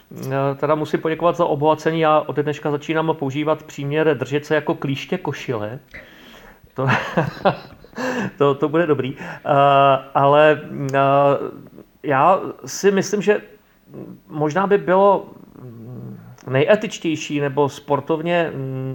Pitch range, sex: 135-155 Hz, male